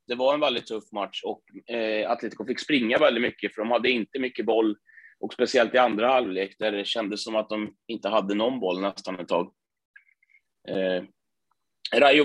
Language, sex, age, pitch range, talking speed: Swedish, male, 30-49, 105-140 Hz, 180 wpm